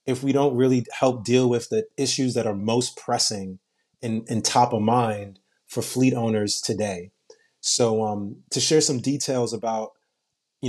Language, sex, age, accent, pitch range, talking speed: English, male, 30-49, American, 110-130 Hz, 170 wpm